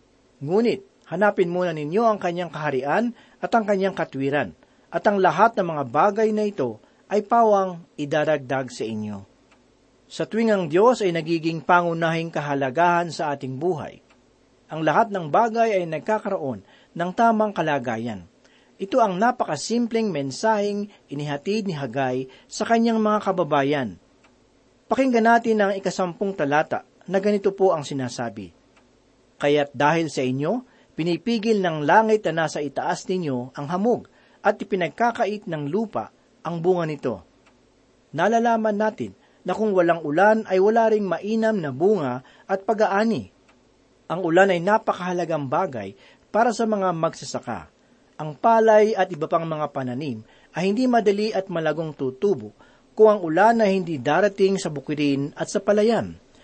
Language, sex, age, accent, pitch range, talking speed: Filipino, male, 40-59, native, 150-215 Hz, 140 wpm